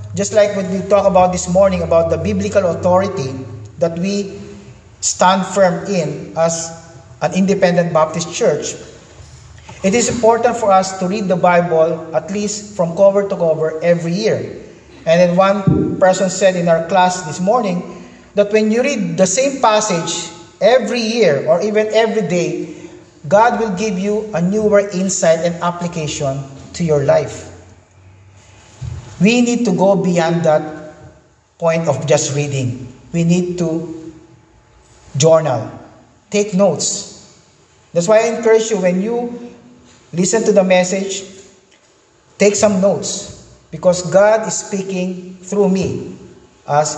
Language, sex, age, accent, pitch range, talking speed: English, male, 40-59, Filipino, 155-200 Hz, 140 wpm